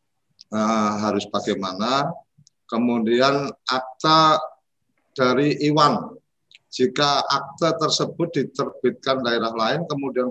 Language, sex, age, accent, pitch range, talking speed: Indonesian, male, 50-69, native, 110-140 Hz, 80 wpm